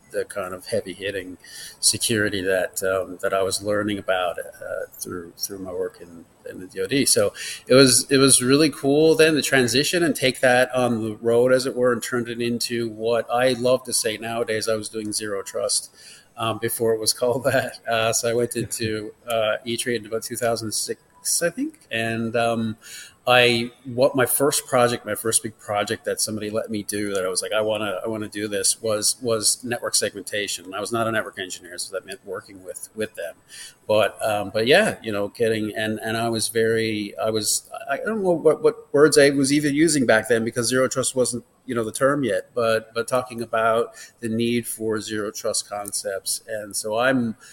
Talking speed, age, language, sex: 210 wpm, 30-49, English, male